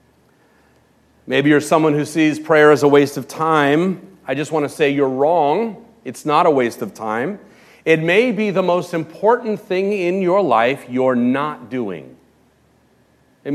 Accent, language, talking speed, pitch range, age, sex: American, English, 170 wpm, 130-190 Hz, 40-59, male